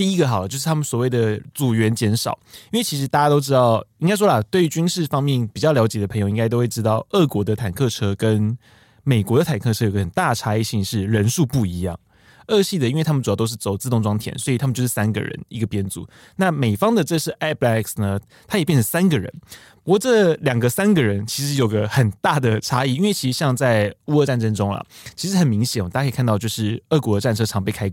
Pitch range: 110-150 Hz